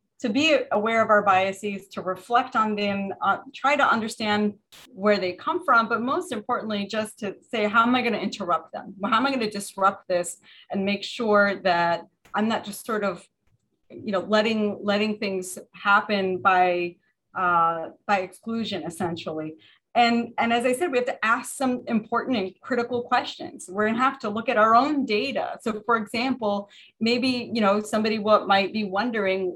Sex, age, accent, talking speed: female, 30-49, American, 185 wpm